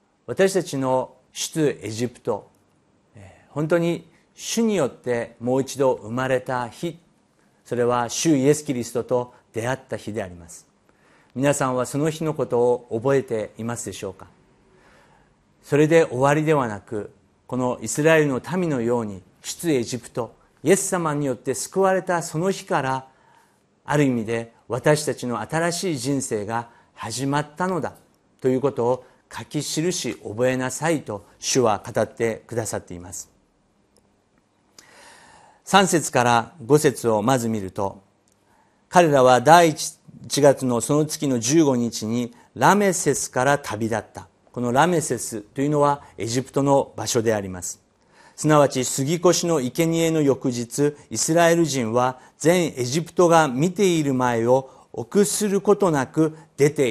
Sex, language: male, Japanese